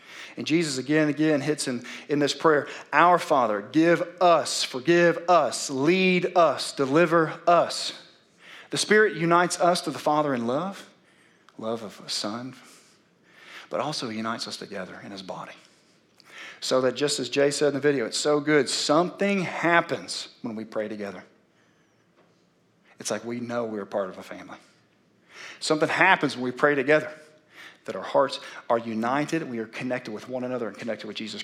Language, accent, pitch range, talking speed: English, American, 125-170 Hz, 175 wpm